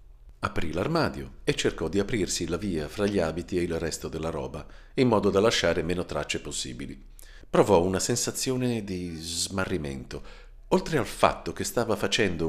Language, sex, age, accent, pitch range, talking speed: Italian, male, 50-69, native, 75-120 Hz, 165 wpm